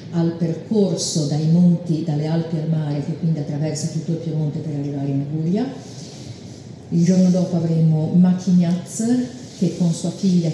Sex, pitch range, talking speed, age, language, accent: female, 155-175 Hz, 155 wpm, 40-59, Italian, native